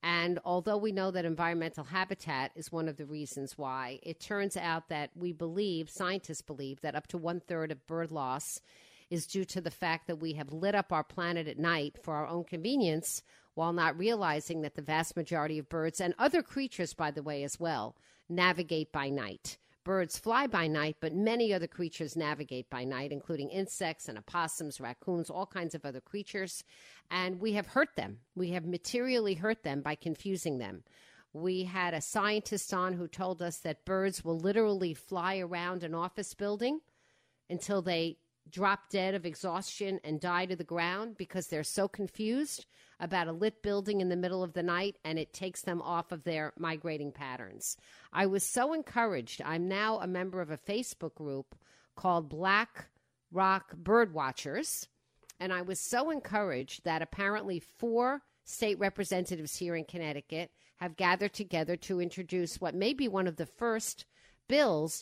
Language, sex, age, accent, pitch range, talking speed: English, female, 50-69, American, 160-195 Hz, 180 wpm